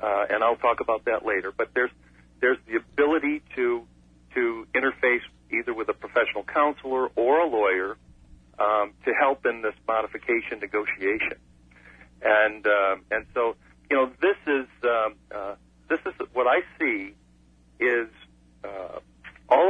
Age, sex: 50-69, male